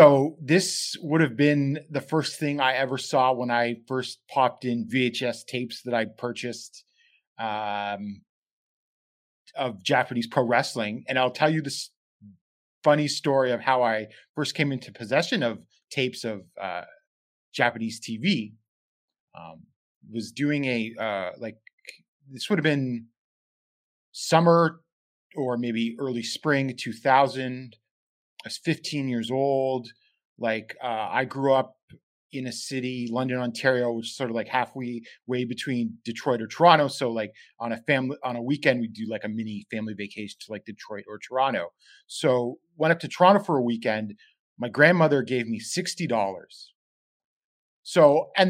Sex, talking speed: male, 155 wpm